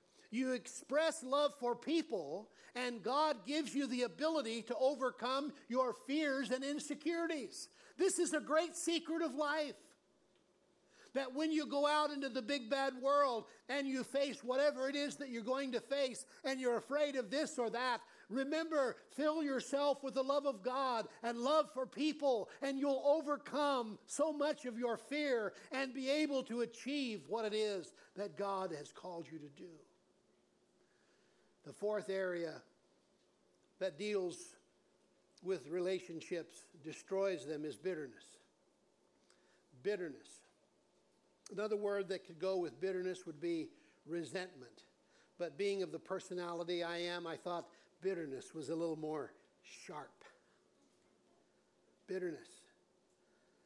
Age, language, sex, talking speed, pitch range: 50-69, English, male, 140 wpm, 185-285 Hz